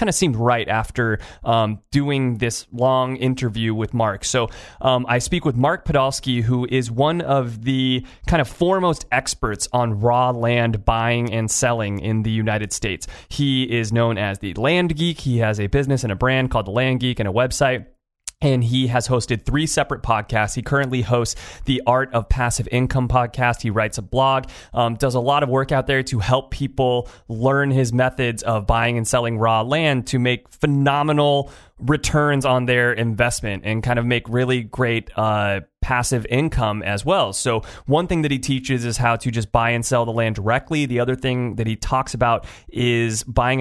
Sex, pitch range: male, 115-130 Hz